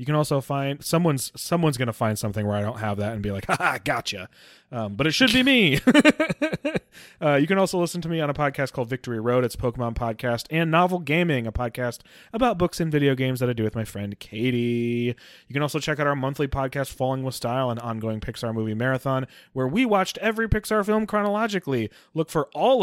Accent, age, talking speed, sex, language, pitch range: American, 30-49, 225 wpm, male, English, 120-160 Hz